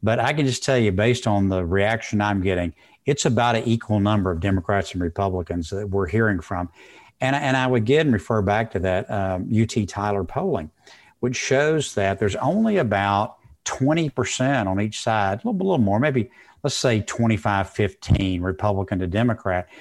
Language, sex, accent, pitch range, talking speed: English, male, American, 100-125 Hz, 190 wpm